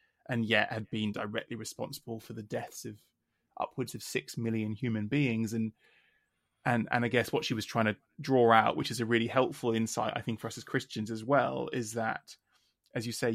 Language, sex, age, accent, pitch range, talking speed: English, male, 20-39, British, 115-130 Hz, 210 wpm